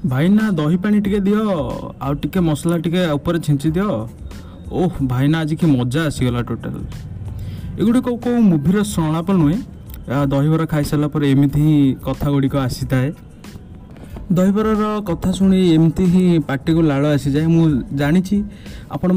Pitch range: 145-180 Hz